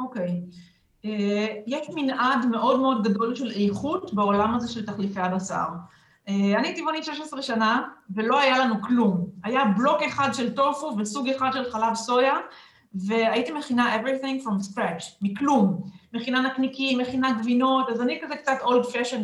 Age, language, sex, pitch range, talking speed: 40-59, Hebrew, female, 210-275 Hz, 155 wpm